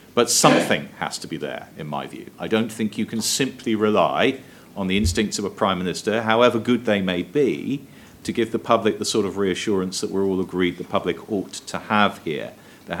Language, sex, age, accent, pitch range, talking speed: English, male, 40-59, British, 95-120 Hz, 215 wpm